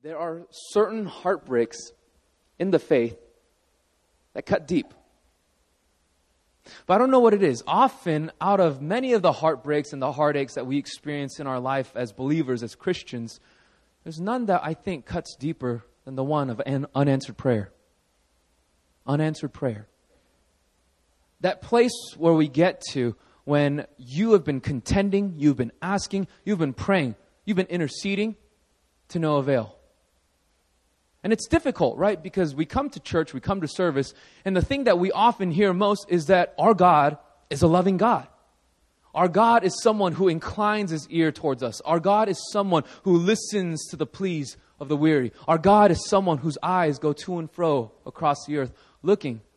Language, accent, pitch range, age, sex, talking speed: English, American, 120-185 Hz, 20-39, male, 170 wpm